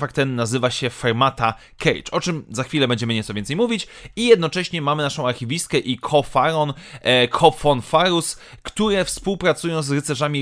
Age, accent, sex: 30-49, native, male